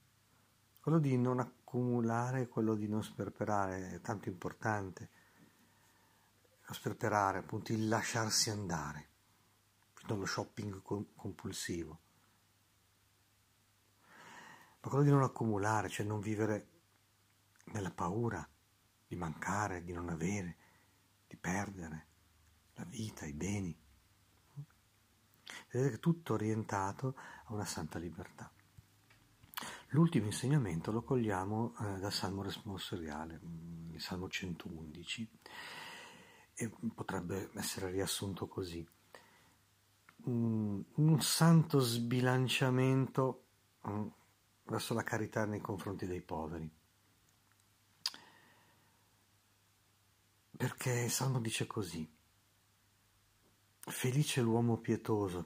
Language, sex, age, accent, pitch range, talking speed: Italian, male, 50-69, native, 95-115 Hz, 90 wpm